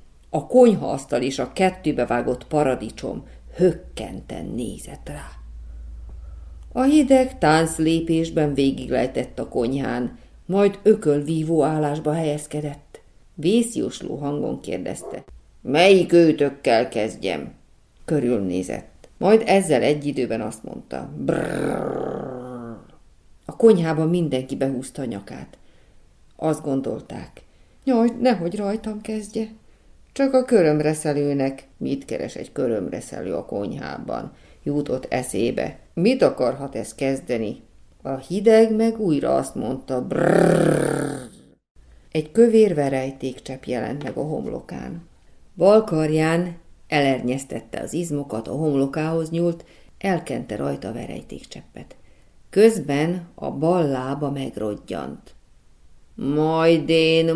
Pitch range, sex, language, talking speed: 130-180 Hz, female, Hungarian, 100 wpm